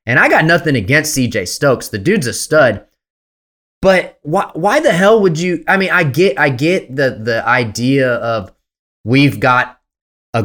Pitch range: 115-145 Hz